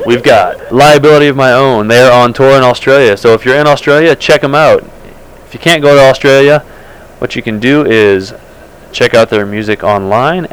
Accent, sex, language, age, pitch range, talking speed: American, male, English, 30-49, 105-135 Hz, 200 wpm